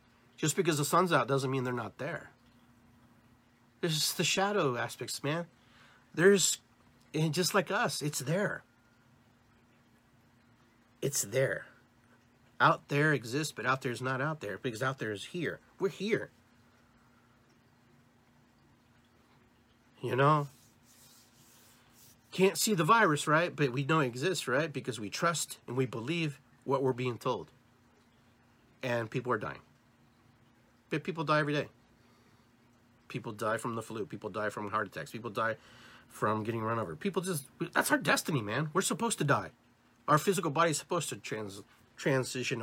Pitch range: 120-150 Hz